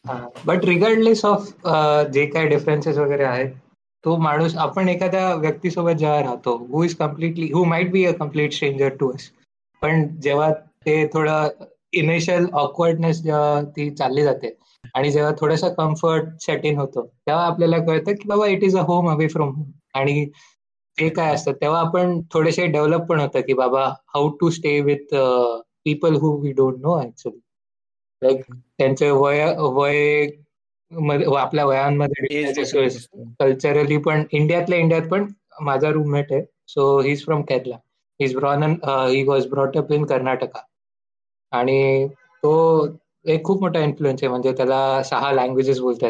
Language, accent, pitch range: Marathi, native, 135-160 Hz